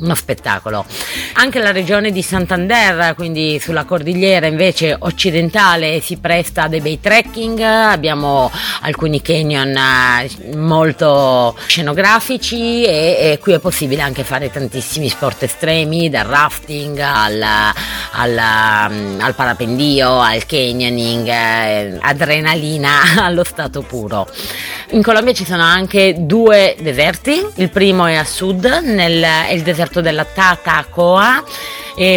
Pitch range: 140-195 Hz